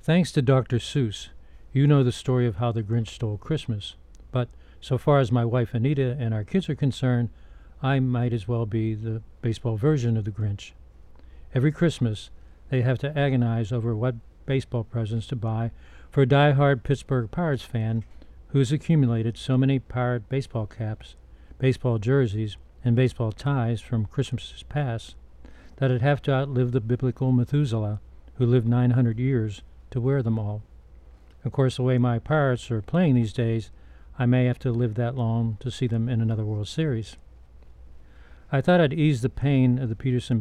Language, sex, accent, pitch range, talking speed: English, male, American, 105-130 Hz, 175 wpm